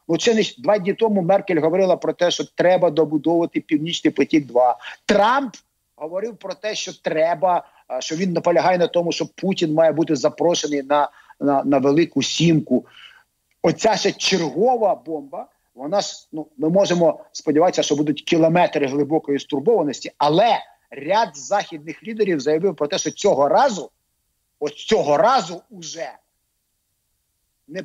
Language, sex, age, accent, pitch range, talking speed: Ukrainian, male, 50-69, native, 155-220 Hz, 140 wpm